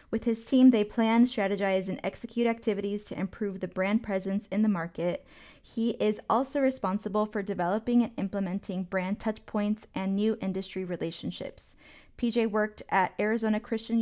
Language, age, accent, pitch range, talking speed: English, 20-39, American, 190-225 Hz, 160 wpm